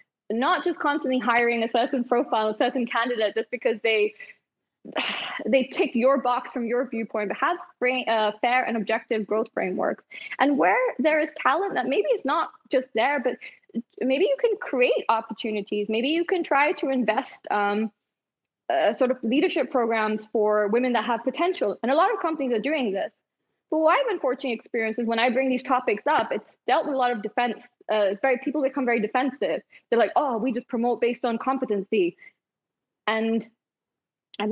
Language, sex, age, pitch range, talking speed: English, female, 20-39, 220-280 Hz, 190 wpm